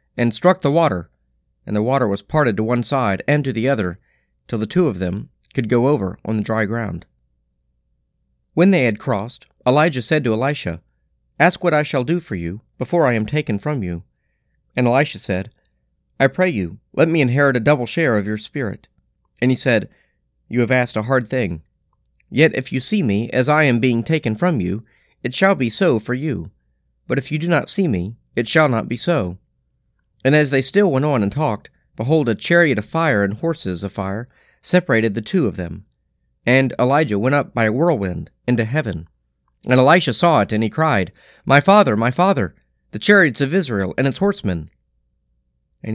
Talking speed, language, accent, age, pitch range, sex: 200 wpm, English, American, 40-59, 95-150 Hz, male